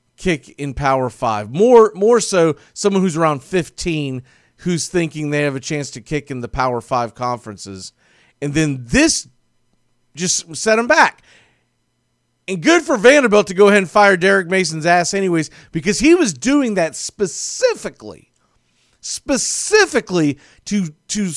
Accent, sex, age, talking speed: American, male, 40-59, 150 wpm